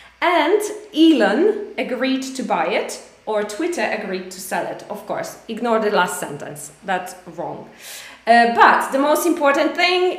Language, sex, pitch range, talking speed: Polish, female, 195-305 Hz, 155 wpm